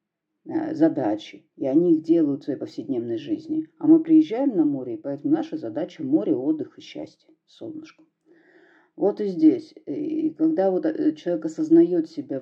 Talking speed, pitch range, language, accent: 155 wpm, 195-325 Hz, Russian, native